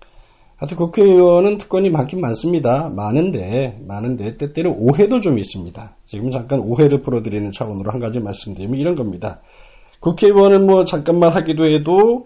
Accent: native